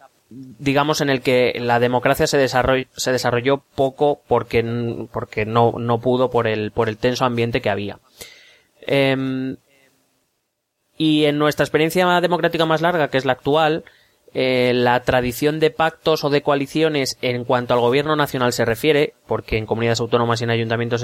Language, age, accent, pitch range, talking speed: Spanish, 20-39, Spanish, 120-145 Hz, 165 wpm